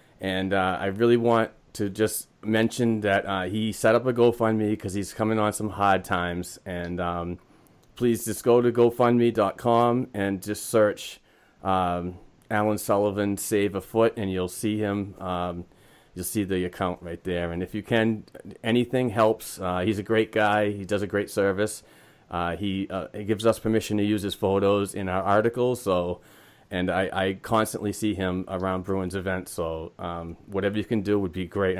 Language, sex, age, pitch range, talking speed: English, male, 30-49, 95-110 Hz, 185 wpm